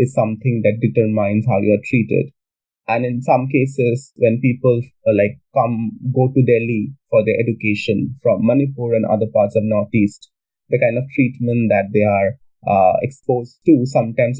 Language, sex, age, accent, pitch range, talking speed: English, male, 20-39, Indian, 110-140 Hz, 170 wpm